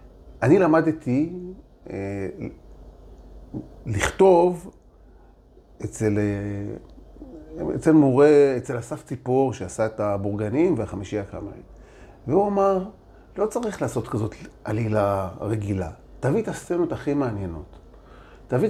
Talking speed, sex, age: 95 wpm, male, 40-59